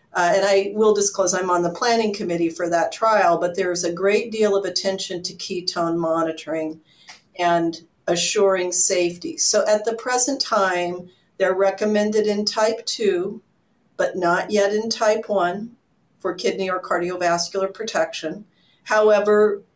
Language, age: English, 50-69